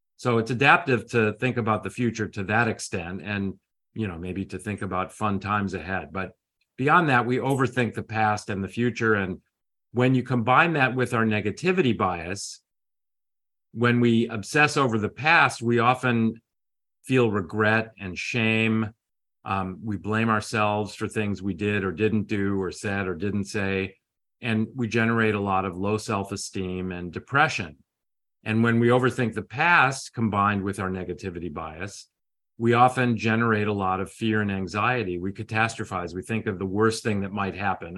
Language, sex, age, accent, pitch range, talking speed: English, male, 40-59, American, 95-115 Hz, 170 wpm